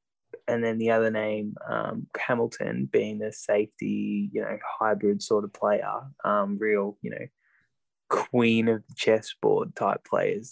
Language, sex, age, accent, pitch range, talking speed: English, male, 10-29, Australian, 110-125 Hz, 150 wpm